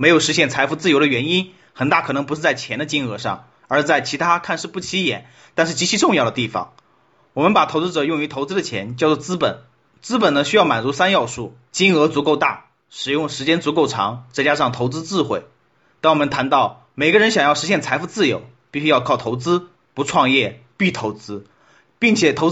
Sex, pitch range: male, 130-175 Hz